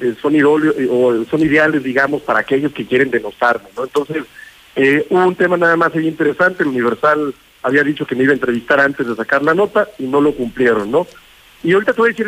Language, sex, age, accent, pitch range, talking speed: Spanish, male, 50-69, Mexican, 145-195 Hz, 200 wpm